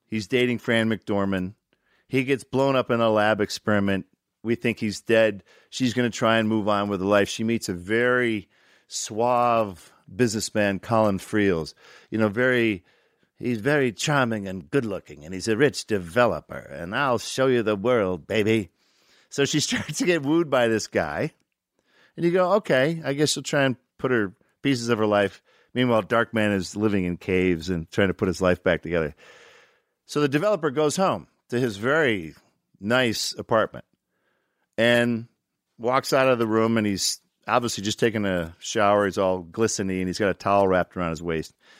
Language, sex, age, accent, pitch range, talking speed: English, male, 50-69, American, 105-140 Hz, 180 wpm